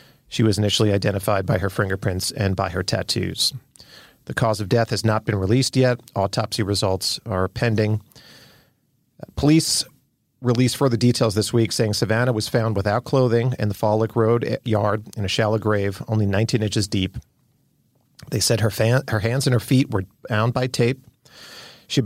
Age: 40-59